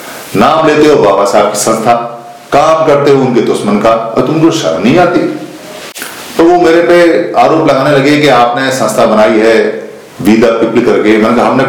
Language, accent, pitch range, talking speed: Hindi, native, 120-165 Hz, 90 wpm